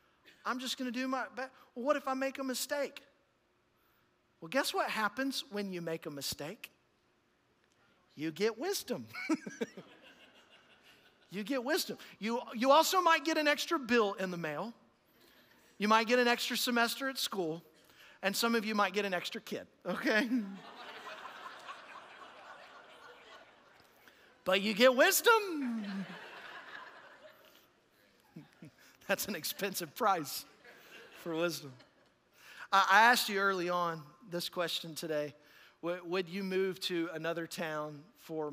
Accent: American